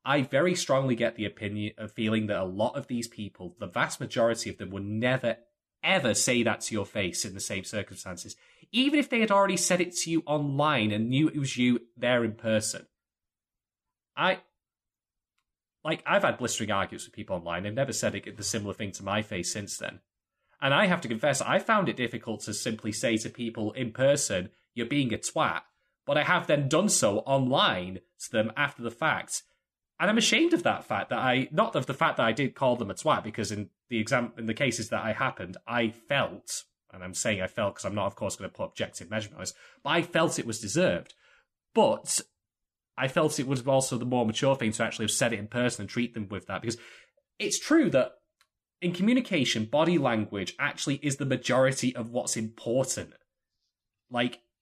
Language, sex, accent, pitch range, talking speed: English, male, British, 110-145 Hz, 210 wpm